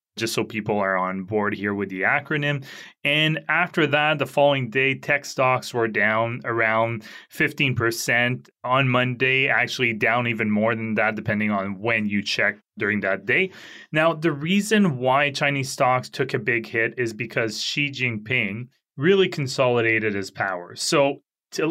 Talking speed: 160 wpm